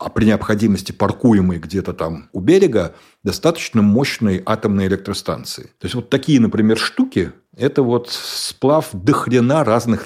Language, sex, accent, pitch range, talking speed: Russian, male, native, 100-120 Hz, 145 wpm